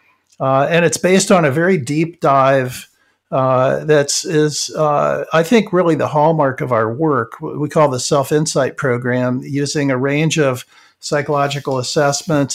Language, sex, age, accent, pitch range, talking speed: English, male, 50-69, American, 130-155 Hz, 160 wpm